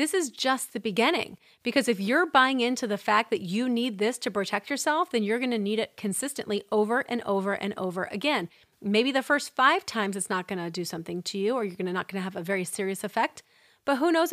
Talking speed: 245 wpm